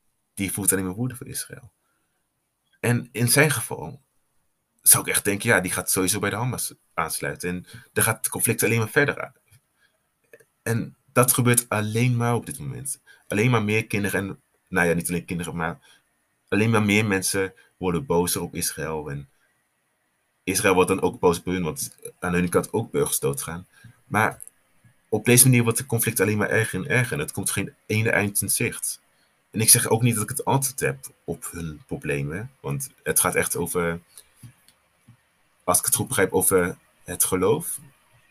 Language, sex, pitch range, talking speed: Dutch, male, 90-115 Hz, 190 wpm